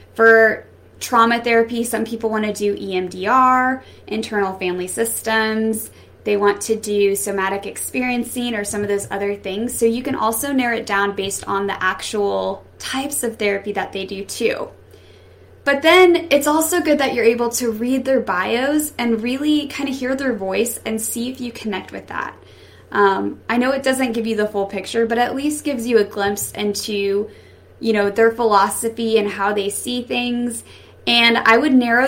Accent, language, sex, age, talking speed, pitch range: American, English, female, 20-39, 185 wpm, 205-260 Hz